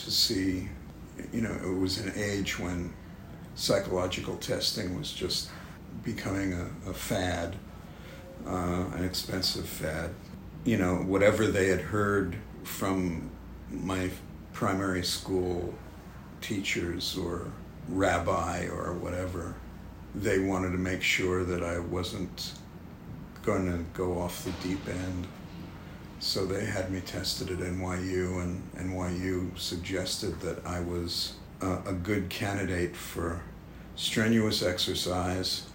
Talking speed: 120 wpm